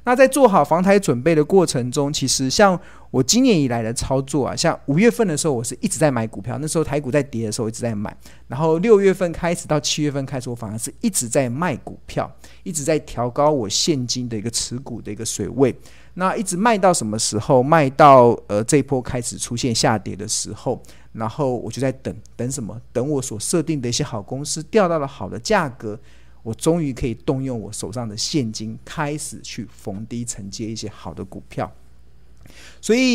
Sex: male